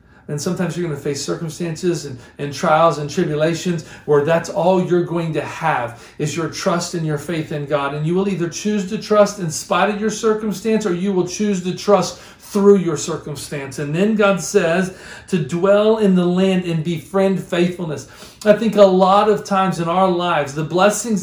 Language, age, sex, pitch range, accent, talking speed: English, 40-59, male, 135-195 Hz, American, 200 wpm